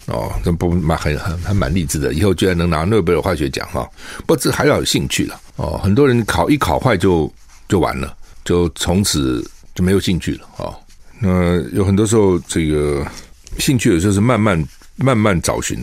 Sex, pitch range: male, 80-110 Hz